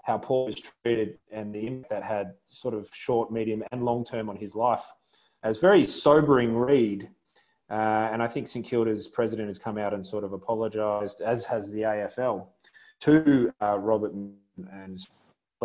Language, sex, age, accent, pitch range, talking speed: English, male, 20-39, Australian, 105-130 Hz, 170 wpm